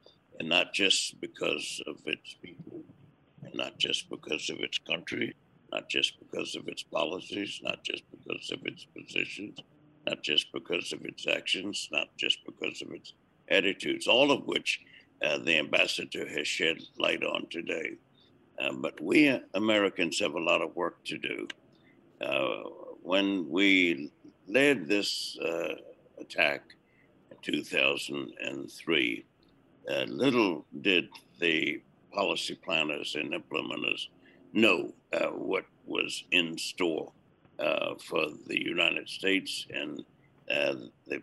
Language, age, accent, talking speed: English, 60-79, American, 130 wpm